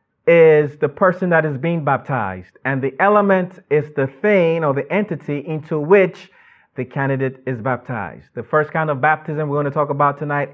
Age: 30-49